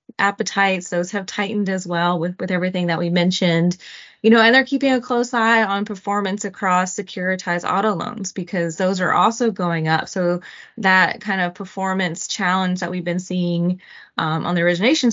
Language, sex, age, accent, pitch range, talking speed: English, female, 20-39, American, 175-200 Hz, 185 wpm